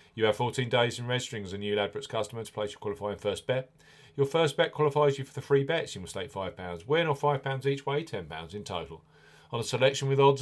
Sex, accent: male, British